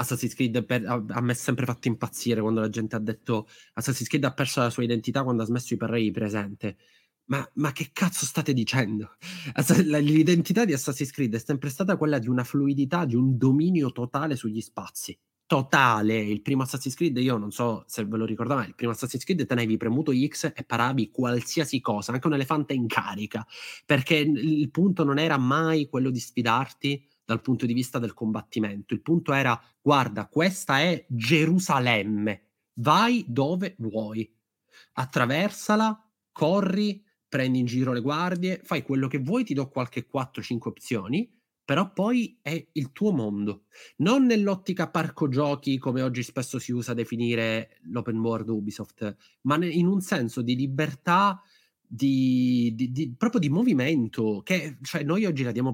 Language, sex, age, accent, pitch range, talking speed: Italian, male, 20-39, native, 115-155 Hz, 170 wpm